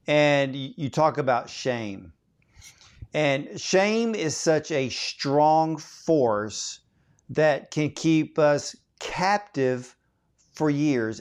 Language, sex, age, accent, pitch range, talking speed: English, male, 50-69, American, 130-165 Hz, 100 wpm